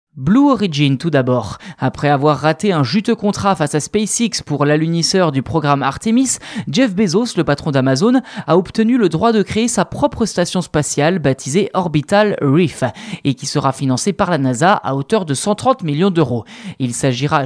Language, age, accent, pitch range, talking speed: French, 20-39, French, 145-210 Hz, 175 wpm